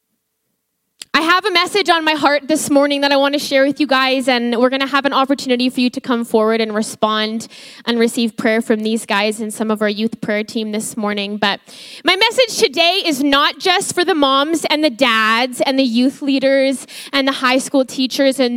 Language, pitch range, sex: English, 240-290 Hz, female